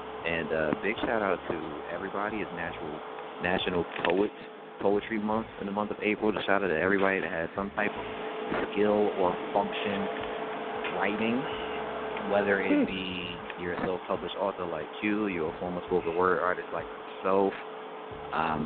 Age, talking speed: 30-49, 165 wpm